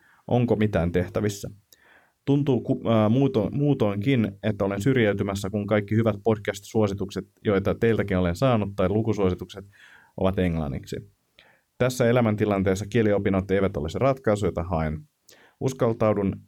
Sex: male